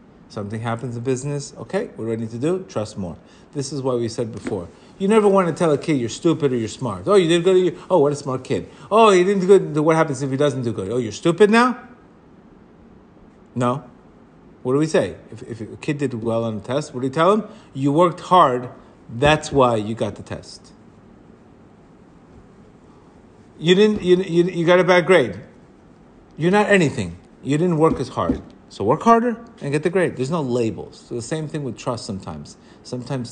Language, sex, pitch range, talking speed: English, male, 120-175 Hz, 210 wpm